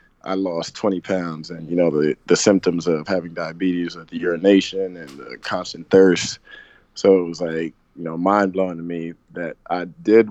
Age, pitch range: 20-39, 85-95 Hz